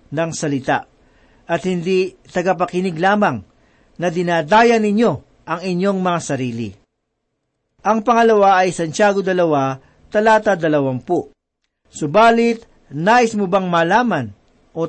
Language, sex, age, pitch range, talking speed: Filipino, male, 50-69, 150-210 Hz, 105 wpm